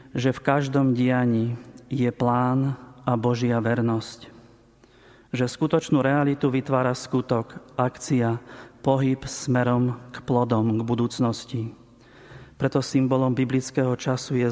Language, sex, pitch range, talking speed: Slovak, male, 120-135 Hz, 110 wpm